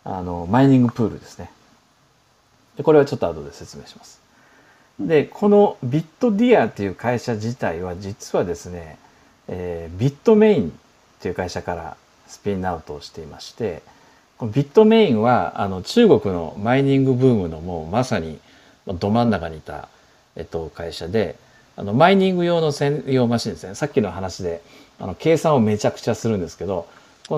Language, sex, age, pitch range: Japanese, male, 50-69, 95-150 Hz